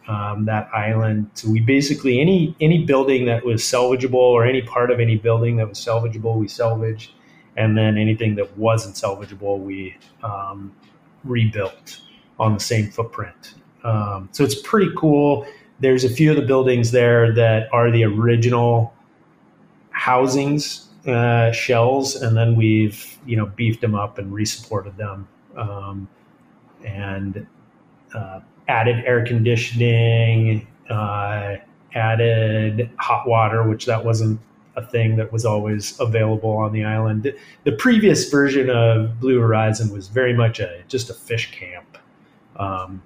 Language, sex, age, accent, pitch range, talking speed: English, male, 30-49, American, 110-125 Hz, 140 wpm